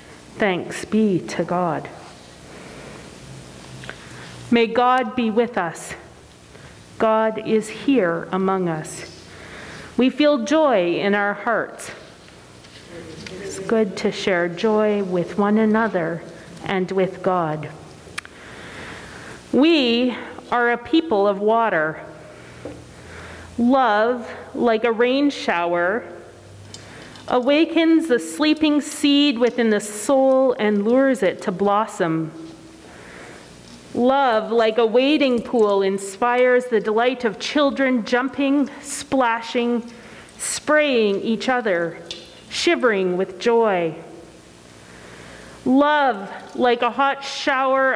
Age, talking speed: 40-59, 95 wpm